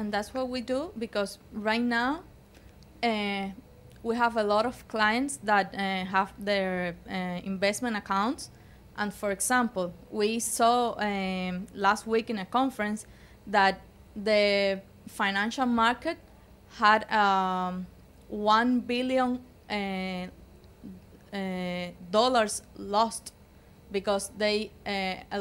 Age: 20-39